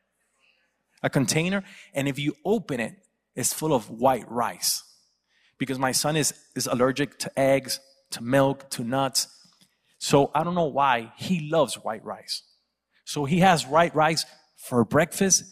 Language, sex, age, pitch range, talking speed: English, male, 30-49, 135-195 Hz, 155 wpm